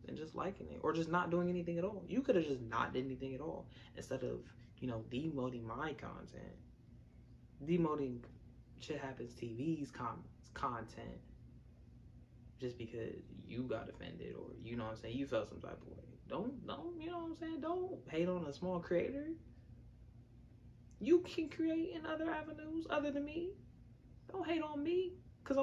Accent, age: American, 20-39